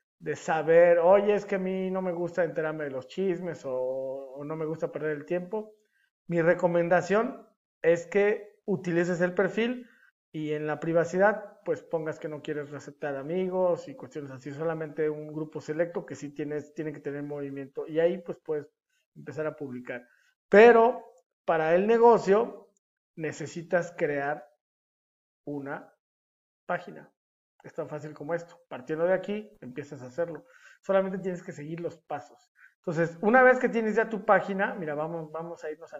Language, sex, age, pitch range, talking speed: Spanish, male, 40-59, 150-195 Hz, 165 wpm